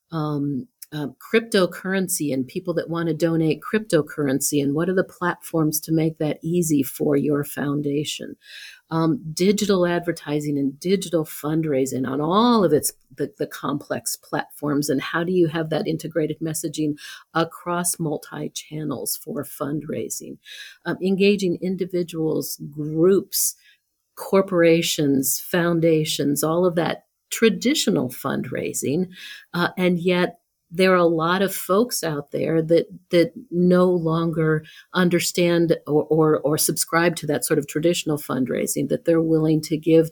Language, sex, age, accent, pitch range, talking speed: English, female, 50-69, American, 150-185 Hz, 135 wpm